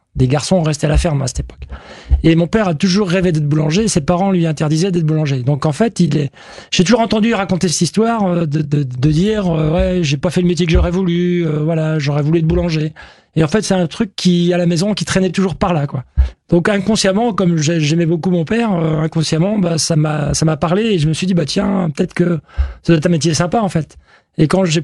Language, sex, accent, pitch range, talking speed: French, male, French, 155-190 Hz, 250 wpm